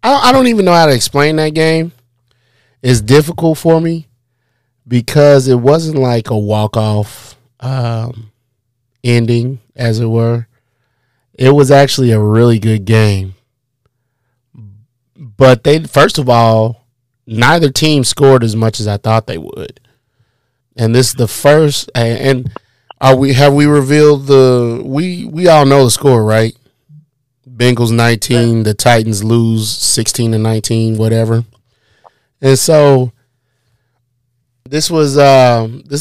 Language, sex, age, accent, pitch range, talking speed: English, male, 30-49, American, 115-140 Hz, 130 wpm